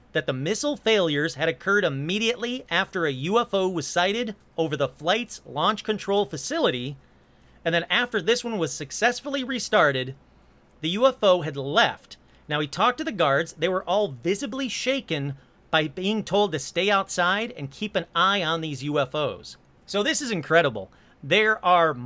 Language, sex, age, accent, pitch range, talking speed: English, male, 40-59, American, 160-220 Hz, 165 wpm